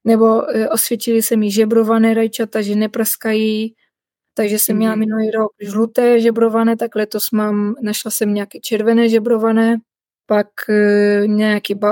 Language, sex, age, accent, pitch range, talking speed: Czech, female, 20-39, native, 210-230 Hz, 125 wpm